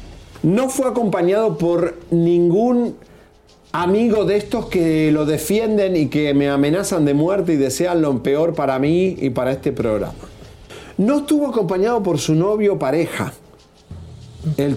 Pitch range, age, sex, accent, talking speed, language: 135-195 Hz, 40-59, male, Argentinian, 140 wpm, Spanish